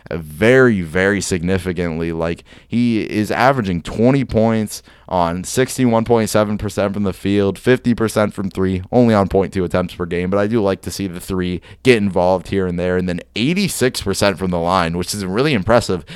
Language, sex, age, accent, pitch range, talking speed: English, male, 20-39, American, 90-110 Hz, 170 wpm